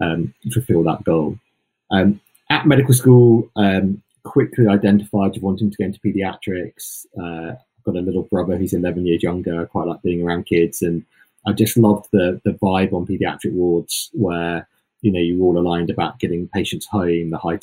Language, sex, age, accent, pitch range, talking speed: English, male, 30-49, British, 85-110 Hz, 190 wpm